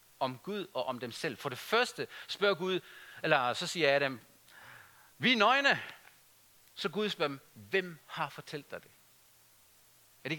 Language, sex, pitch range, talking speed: Danish, male, 135-210 Hz, 180 wpm